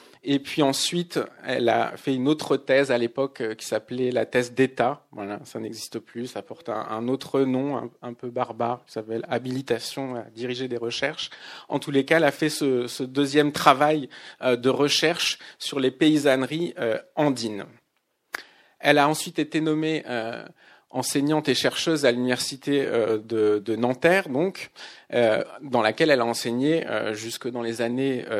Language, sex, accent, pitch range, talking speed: French, male, French, 125-150 Hz, 160 wpm